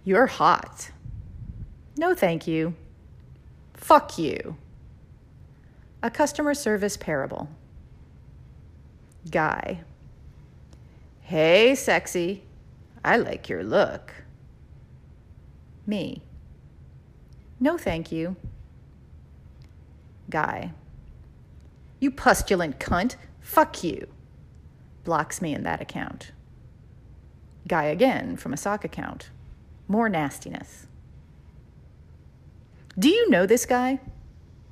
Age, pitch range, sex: 40-59, 150-245 Hz, female